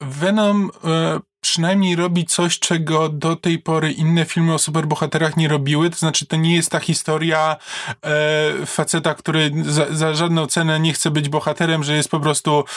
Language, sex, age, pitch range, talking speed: Polish, male, 20-39, 155-195 Hz, 165 wpm